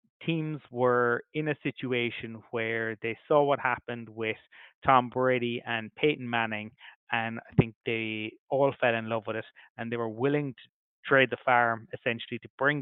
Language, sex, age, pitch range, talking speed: English, male, 20-39, 115-135 Hz, 175 wpm